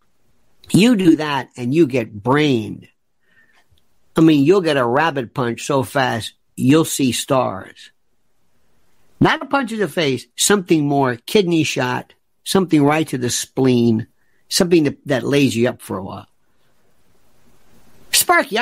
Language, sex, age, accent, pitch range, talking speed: English, male, 50-69, American, 160-265 Hz, 140 wpm